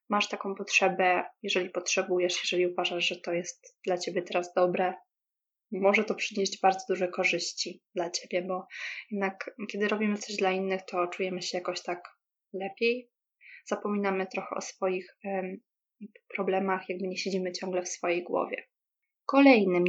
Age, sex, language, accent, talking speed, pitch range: 20-39, female, Polish, native, 145 wpm, 180-205 Hz